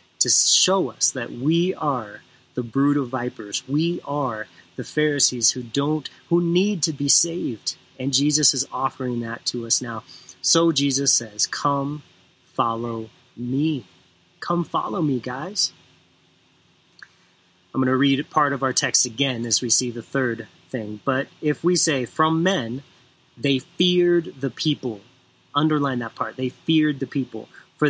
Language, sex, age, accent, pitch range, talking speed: English, male, 30-49, American, 125-155 Hz, 155 wpm